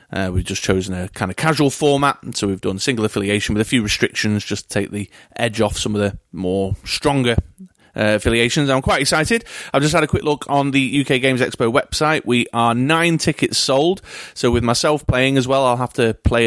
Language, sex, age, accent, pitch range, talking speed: English, male, 30-49, British, 100-125 Hz, 225 wpm